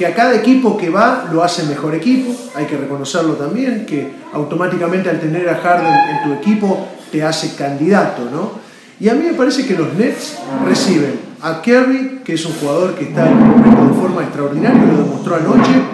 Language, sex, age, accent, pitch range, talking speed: Spanish, male, 40-59, Argentinian, 155-220 Hz, 185 wpm